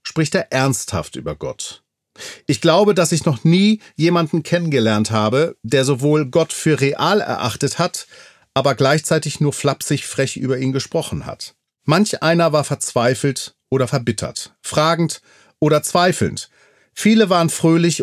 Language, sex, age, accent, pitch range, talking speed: German, male, 40-59, German, 125-170 Hz, 140 wpm